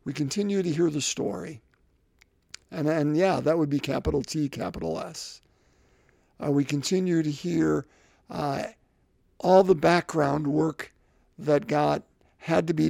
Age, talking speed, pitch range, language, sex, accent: 50-69, 145 wpm, 145-180 Hz, English, male, American